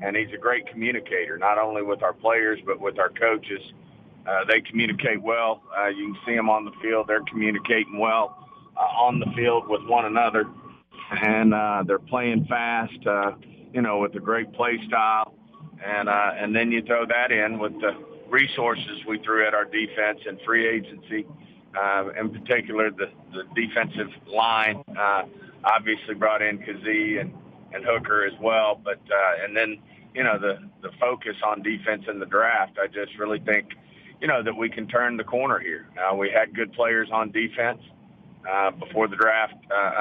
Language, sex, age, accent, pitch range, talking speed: English, male, 50-69, American, 105-115 Hz, 185 wpm